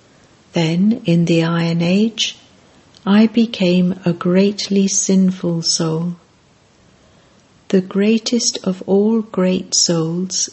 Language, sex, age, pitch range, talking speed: English, female, 60-79, 170-200 Hz, 95 wpm